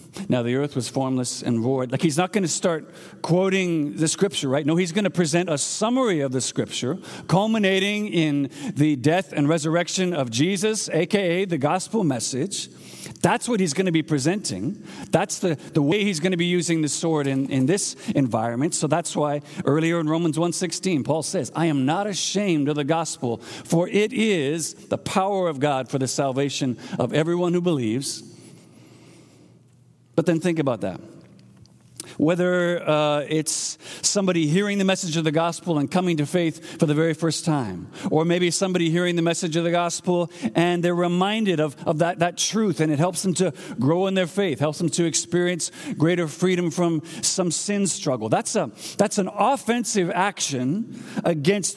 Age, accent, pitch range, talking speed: 50-69, American, 150-185 Hz, 185 wpm